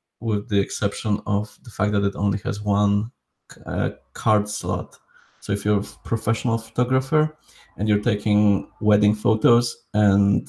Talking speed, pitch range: 150 wpm, 100-115 Hz